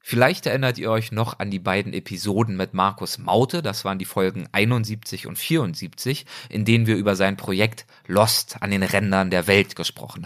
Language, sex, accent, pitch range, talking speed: German, male, German, 100-130 Hz, 185 wpm